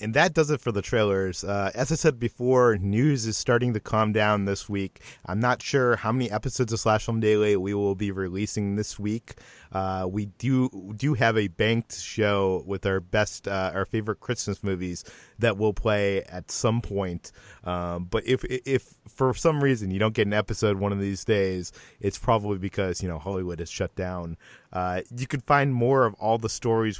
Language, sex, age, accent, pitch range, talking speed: English, male, 30-49, American, 95-115 Hz, 210 wpm